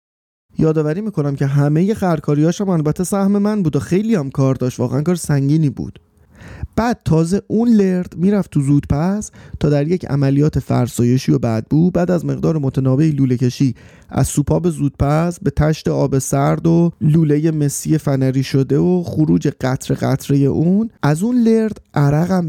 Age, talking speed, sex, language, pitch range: 30-49, 160 wpm, male, Persian, 135-180 Hz